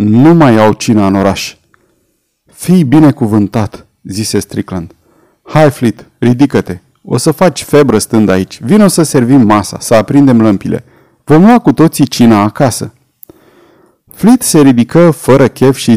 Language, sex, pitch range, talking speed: Romanian, male, 105-155 Hz, 145 wpm